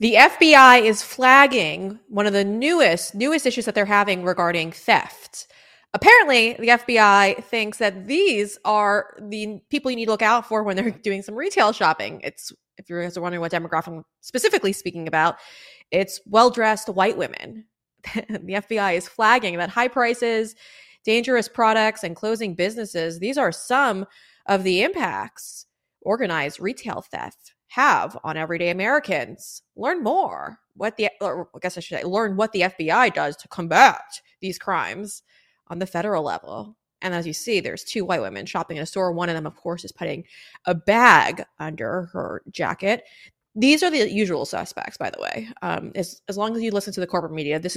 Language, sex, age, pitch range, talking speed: English, female, 20-39, 180-230 Hz, 180 wpm